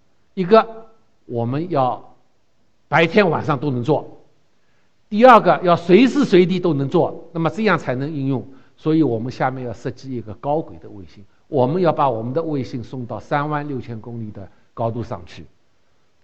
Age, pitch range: 60-79, 115-170 Hz